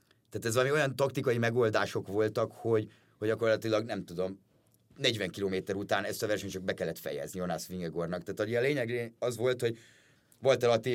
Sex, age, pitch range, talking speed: male, 30-49, 105-125 Hz, 175 wpm